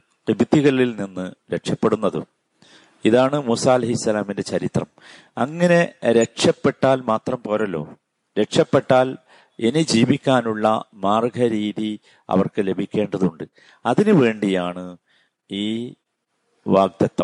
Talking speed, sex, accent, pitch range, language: 70 wpm, male, native, 105-130 Hz, Malayalam